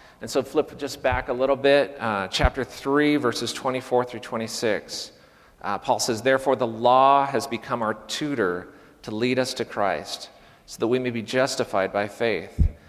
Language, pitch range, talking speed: English, 110-135 Hz, 175 wpm